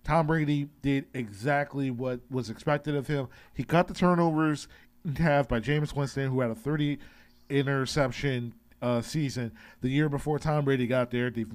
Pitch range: 125-150 Hz